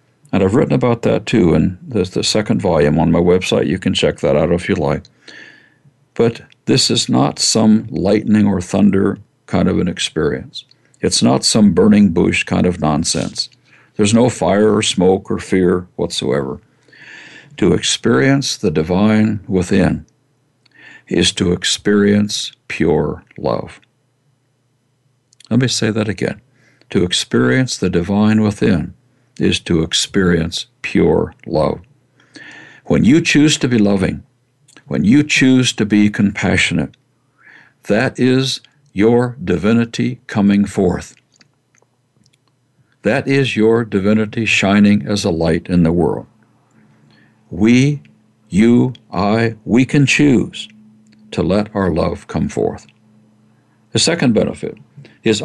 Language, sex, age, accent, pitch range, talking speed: English, male, 60-79, American, 100-125 Hz, 130 wpm